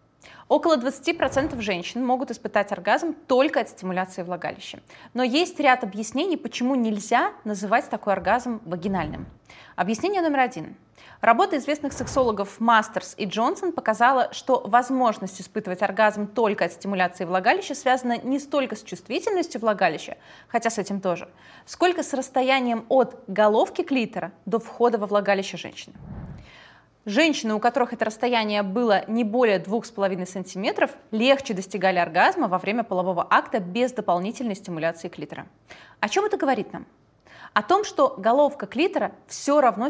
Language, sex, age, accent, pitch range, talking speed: Russian, female, 20-39, native, 200-265 Hz, 140 wpm